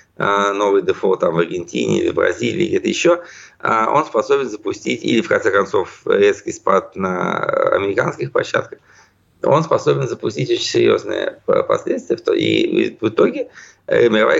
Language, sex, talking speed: Russian, male, 135 wpm